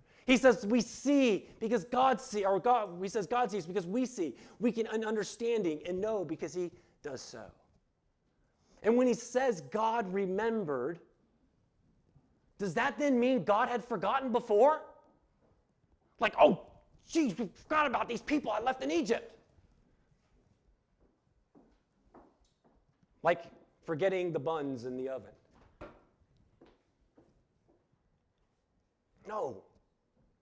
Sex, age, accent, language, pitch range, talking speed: male, 40-59, American, English, 160-220 Hz, 115 wpm